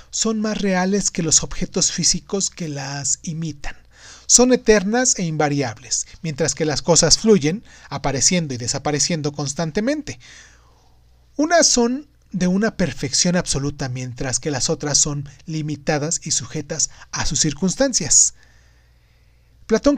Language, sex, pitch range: Spanish, male, 140-195 Hz